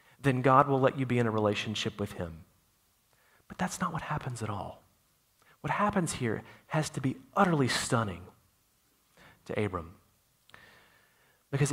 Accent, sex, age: American, male, 40-59